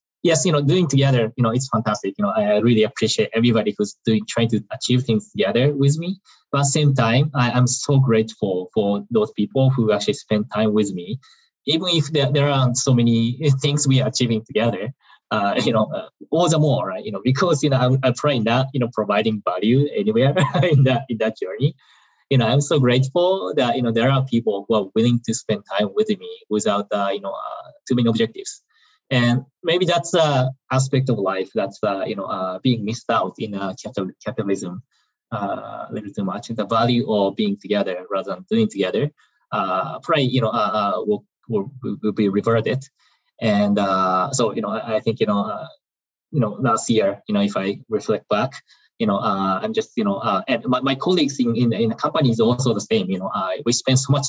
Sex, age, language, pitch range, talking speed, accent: male, 20-39, English, 110-145 Hz, 220 wpm, Japanese